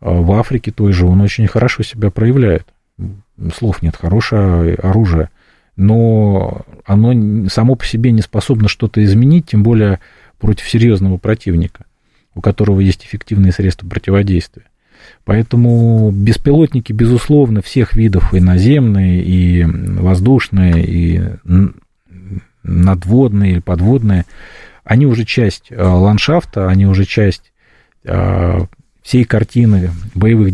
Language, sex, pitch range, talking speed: Russian, male, 95-115 Hz, 110 wpm